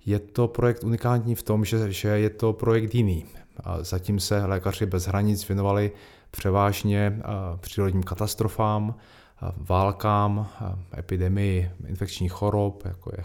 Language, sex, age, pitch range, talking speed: Czech, male, 30-49, 95-105 Hz, 120 wpm